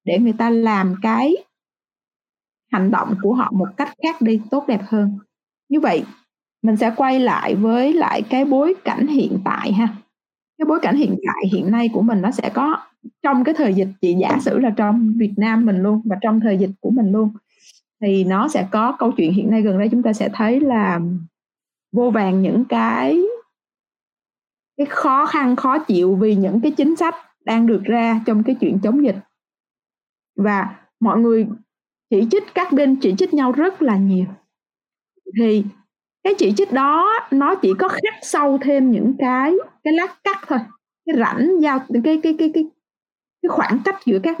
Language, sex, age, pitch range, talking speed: Vietnamese, female, 20-39, 215-290 Hz, 190 wpm